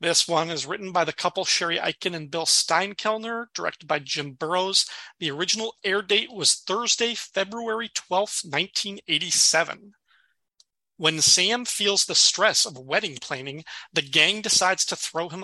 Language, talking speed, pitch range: English, 150 wpm, 150-200 Hz